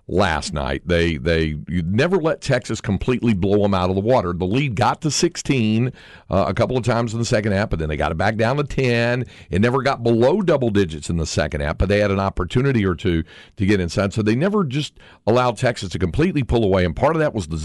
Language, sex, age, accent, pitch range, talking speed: English, male, 50-69, American, 90-120 Hz, 250 wpm